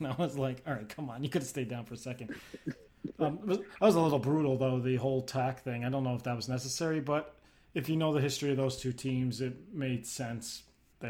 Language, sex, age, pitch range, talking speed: English, male, 30-49, 120-140 Hz, 255 wpm